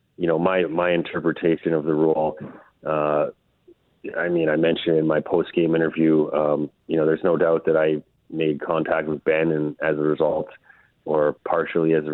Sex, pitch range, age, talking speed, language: male, 75-80 Hz, 30-49, 185 wpm, English